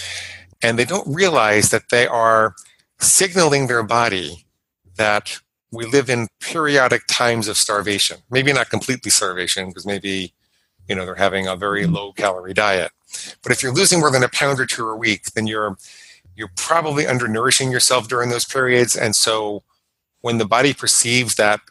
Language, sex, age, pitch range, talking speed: English, male, 40-59, 105-125 Hz, 165 wpm